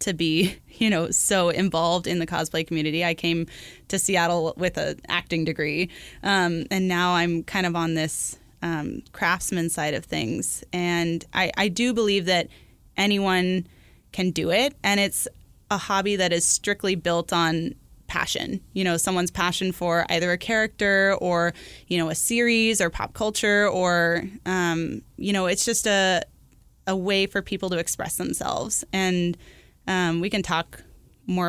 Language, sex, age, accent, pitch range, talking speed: English, female, 20-39, American, 170-195 Hz, 165 wpm